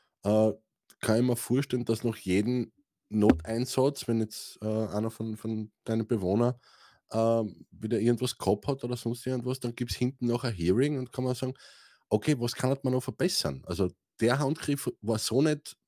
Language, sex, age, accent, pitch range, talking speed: German, male, 20-39, Austrian, 110-135 Hz, 180 wpm